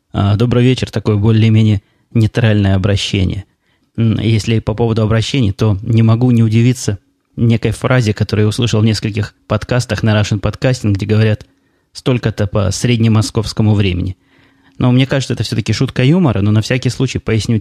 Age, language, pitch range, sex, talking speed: 20-39, Russian, 105-120 Hz, male, 150 wpm